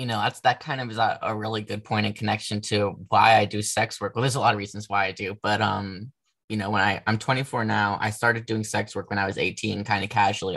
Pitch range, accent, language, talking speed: 105-120 Hz, American, English, 285 wpm